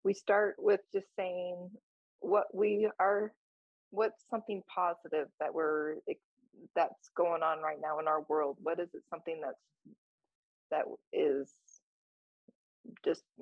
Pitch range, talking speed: 165-210 Hz, 130 wpm